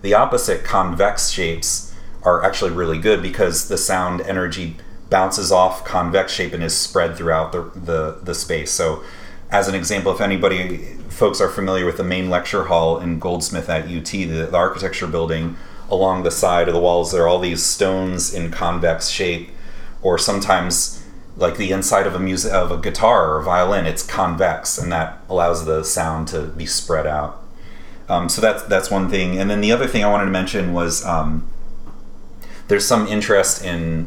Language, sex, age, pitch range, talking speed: English, male, 30-49, 85-95 Hz, 185 wpm